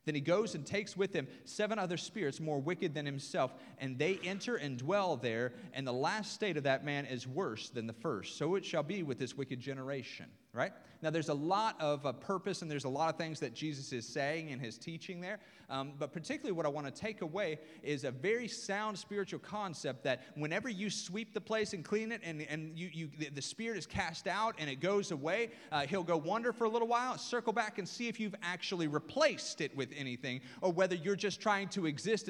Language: English